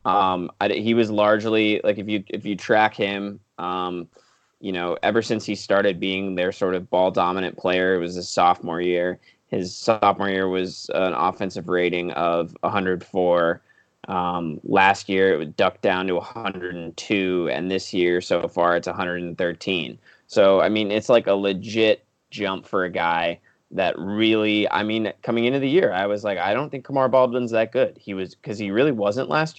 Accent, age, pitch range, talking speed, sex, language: American, 20-39, 90-105 Hz, 190 wpm, male, English